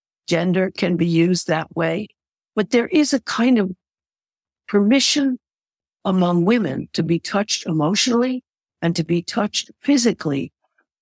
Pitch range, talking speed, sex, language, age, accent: 160-220 Hz, 130 wpm, female, English, 60-79, American